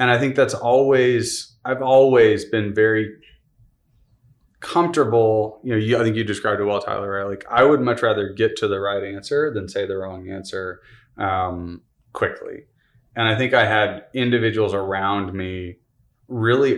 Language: English